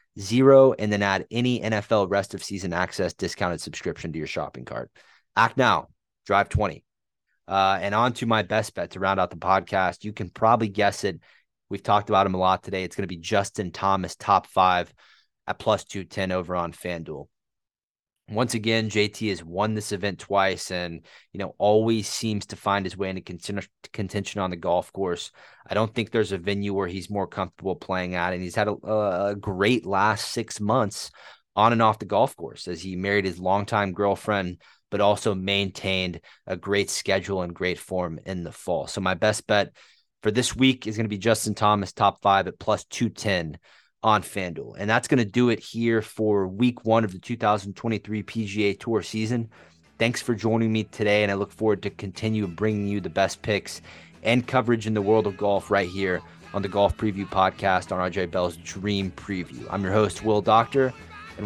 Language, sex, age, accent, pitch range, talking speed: English, male, 30-49, American, 95-110 Hz, 200 wpm